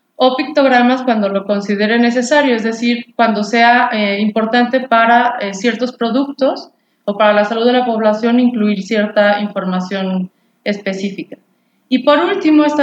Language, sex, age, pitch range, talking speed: Spanish, female, 20-39, 225-275 Hz, 145 wpm